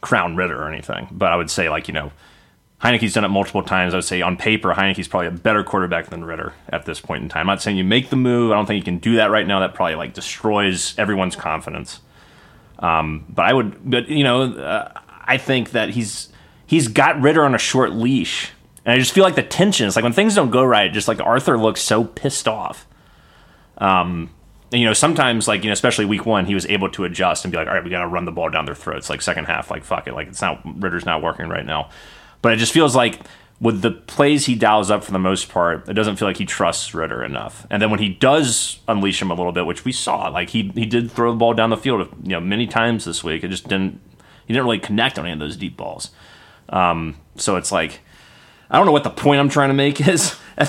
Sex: male